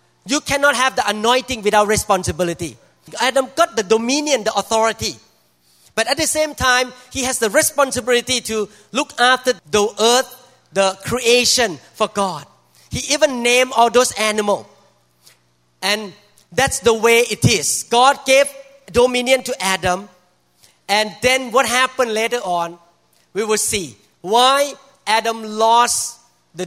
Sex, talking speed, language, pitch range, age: male, 135 wpm, English, 190-255 Hz, 40-59